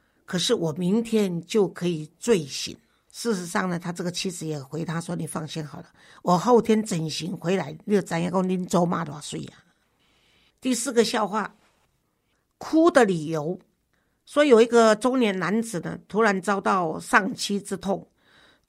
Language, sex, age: Chinese, female, 50-69